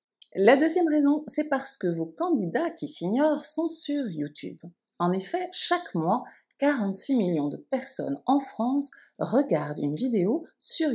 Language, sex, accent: French, female, French